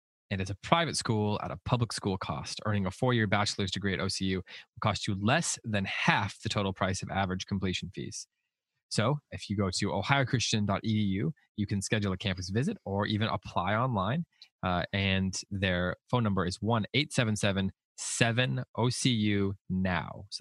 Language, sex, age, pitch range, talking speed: English, male, 20-39, 95-115 Hz, 170 wpm